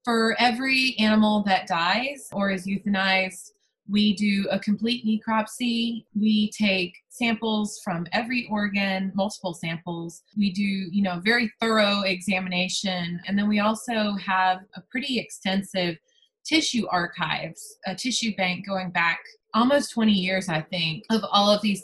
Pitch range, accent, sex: 190-235 Hz, American, female